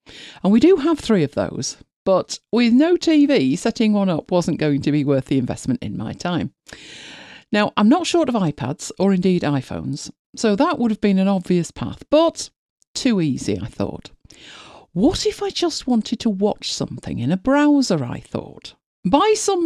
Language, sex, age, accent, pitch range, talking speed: English, female, 50-69, British, 150-250 Hz, 185 wpm